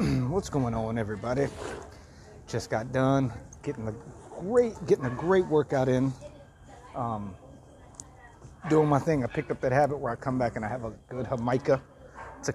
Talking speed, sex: 165 wpm, male